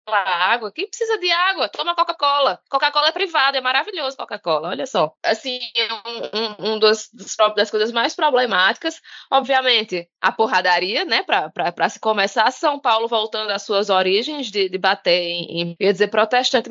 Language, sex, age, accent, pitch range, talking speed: Portuguese, female, 20-39, Brazilian, 210-285 Hz, 155 wpm